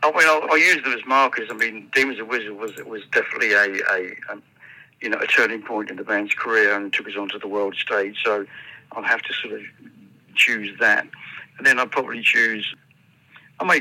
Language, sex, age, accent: Finnish, male, 60-79, British